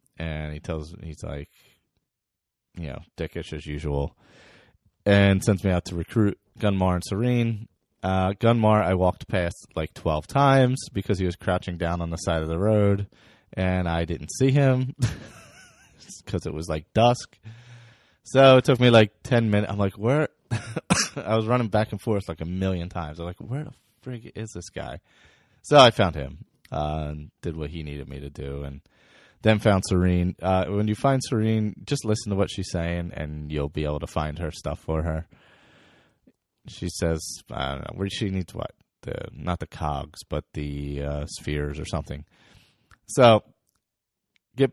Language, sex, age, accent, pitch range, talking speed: English, male, 30-49, American, 75-110 Hz, 180 wpm